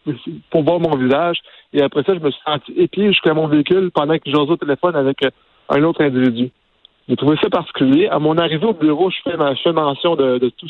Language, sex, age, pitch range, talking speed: French, male, 60-79, 140-175 Hz, 220 wpm